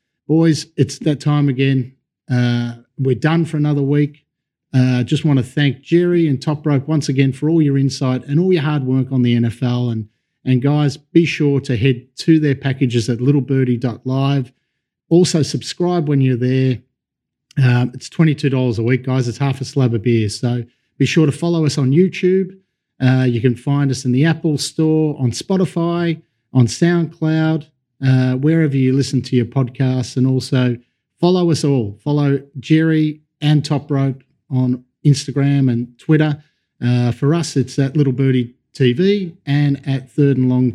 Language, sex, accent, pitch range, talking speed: English, male, Australian, 130-155 Hz, 175 wpm